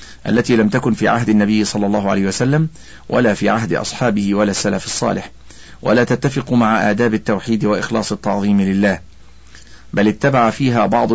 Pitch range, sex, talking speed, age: 95-120 Hz, male, 155 wpm, 40-59